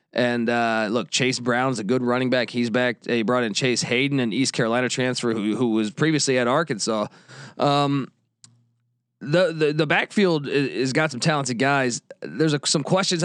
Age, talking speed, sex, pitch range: 20-39, 180 wpm, male, 120-155 Hz